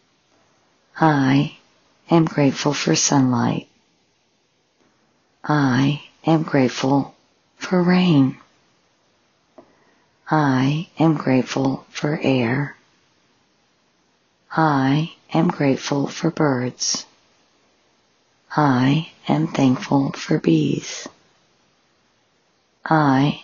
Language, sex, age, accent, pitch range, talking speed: English, female, 50-69, American, 130-155 Hz, 65 wpm